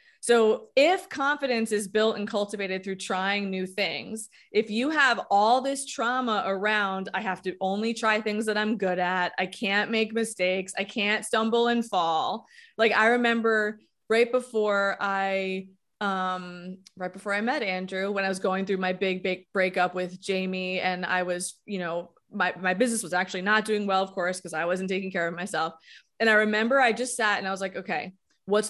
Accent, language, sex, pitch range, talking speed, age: American, English, female, 185-225 Hz, 195 wpm, 20-39